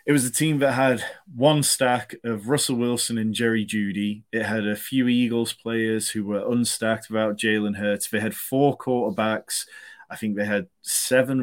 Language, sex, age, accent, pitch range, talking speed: English, male, 30-49, British, 105-125 Hz, 185 wpm